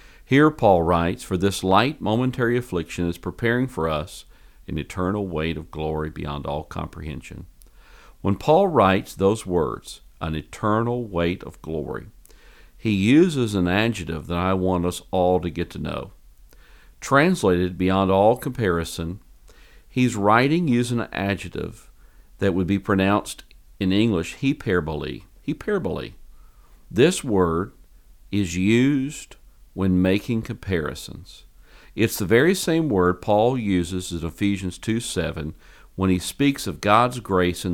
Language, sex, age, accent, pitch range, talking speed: English, male, 50-69, American, 85-115 Hz, 135 wpm